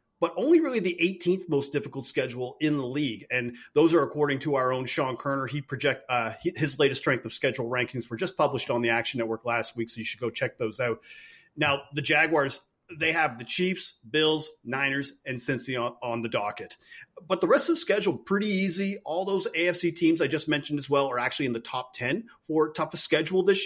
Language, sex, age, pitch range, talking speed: English, male, 30-49, 125-170 Hz, 220 wpm